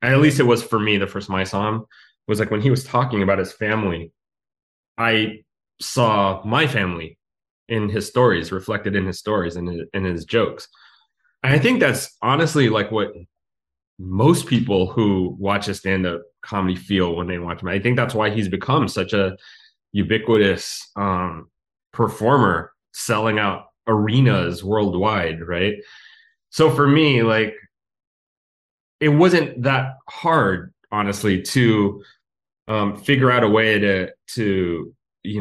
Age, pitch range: 20-39, 95-120 Hz